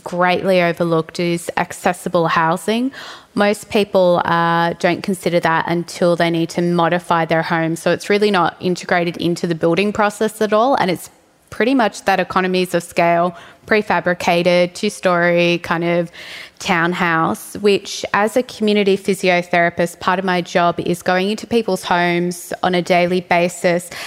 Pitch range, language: 175-210 Hz, English